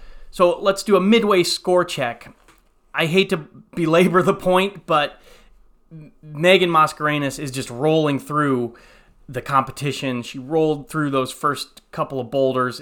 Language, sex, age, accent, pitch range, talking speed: English, male, 30-49, American, 130-180 Hz, 140 wpm